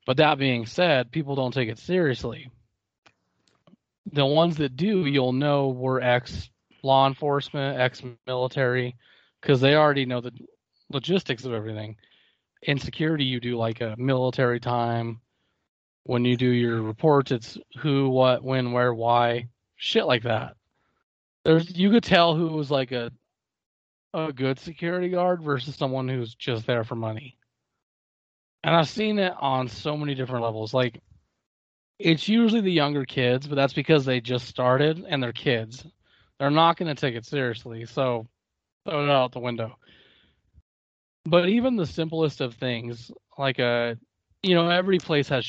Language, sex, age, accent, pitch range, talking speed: English, male, 30-49, American, 120-150 Hz, 155 wpm